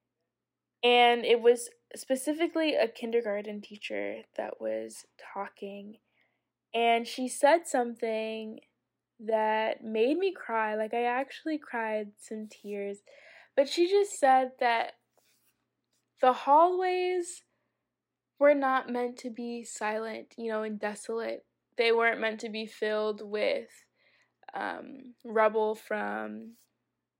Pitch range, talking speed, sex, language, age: 215-265 Hz, 115 wpm, female, English, 10-29